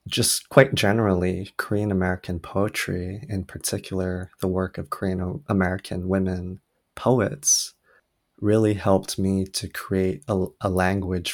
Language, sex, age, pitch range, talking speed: English, male, 20-39, 90-100 Hz, 110 wpm